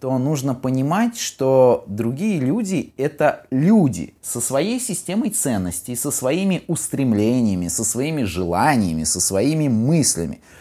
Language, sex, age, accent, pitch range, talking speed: Russian, male, 20-39, native, 100-145 Hz, 120 wpm